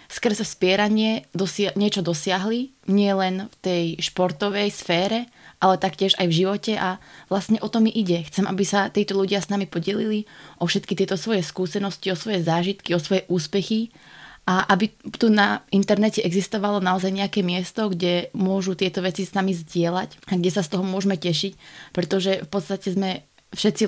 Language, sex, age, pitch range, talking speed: Slovak, female, 20-39, 175-200 Hz, 175 wpm